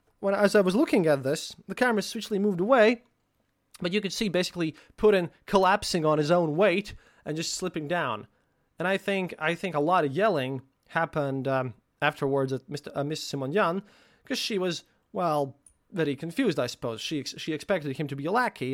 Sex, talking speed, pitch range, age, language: male, 195 wpm, 150-205 Hz, 20-39, English